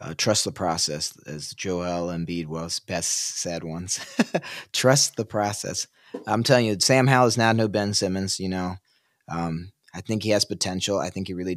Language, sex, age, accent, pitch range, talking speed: English, male, 30-49, American, 90-110 Hz, 185 wpm